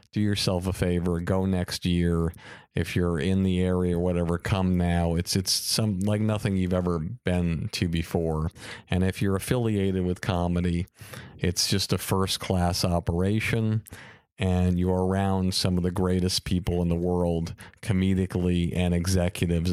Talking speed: 155 wpm